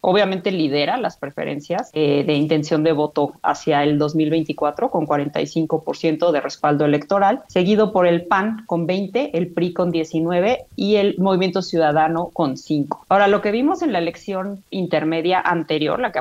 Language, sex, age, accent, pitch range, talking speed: Spanish, female, 30-49, Mexican, 165-220 Hz, 160 wpm